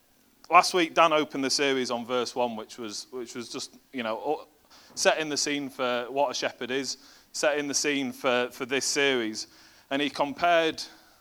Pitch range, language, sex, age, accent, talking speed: 115-145 Hz, English, male, 30-49, British, 180 wpm